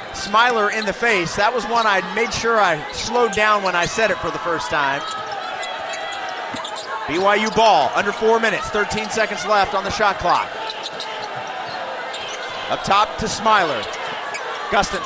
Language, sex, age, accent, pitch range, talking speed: English, male, 30-49, American, 205-260 Hz, 150 wpm